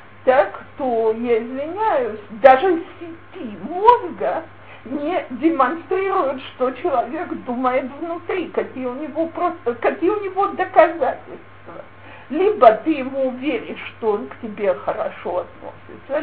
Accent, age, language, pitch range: native, 50-69, Russian, 230-345 Hz